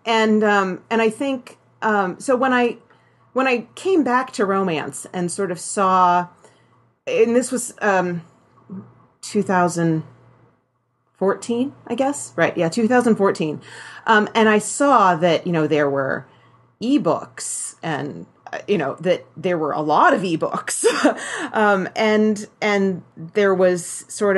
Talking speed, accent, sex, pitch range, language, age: 135 wpm, American, female, 155-215 Hz, English, 30-49